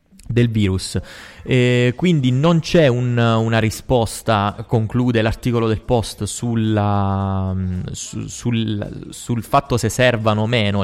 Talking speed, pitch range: 120 wpm, 105-130 Hz